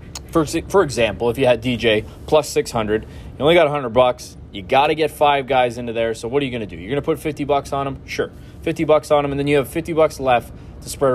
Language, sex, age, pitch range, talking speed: English, male, 20-39, 120-165 Hz, 260 wpm